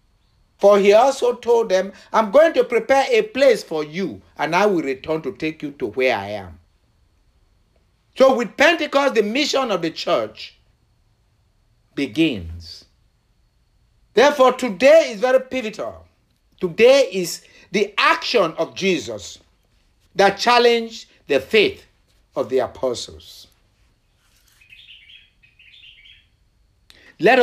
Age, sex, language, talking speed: 60-79, male, English, 115 wpm